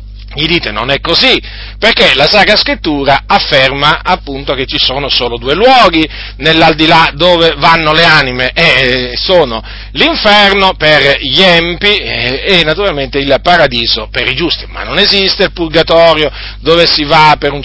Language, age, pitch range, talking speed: Italian, 40-59, 125-155 Hz, 155 wpm